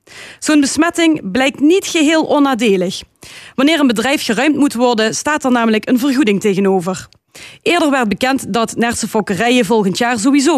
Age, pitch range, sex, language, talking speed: 30-49, 205-275 Hz, female, Dutch, 155 wpm